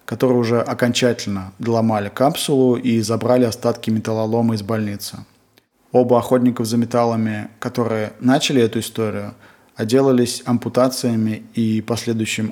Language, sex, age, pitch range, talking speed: Russian, male, 20-39, 115-130 Hz, 110 wpm